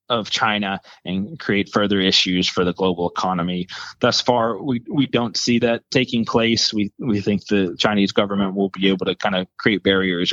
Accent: American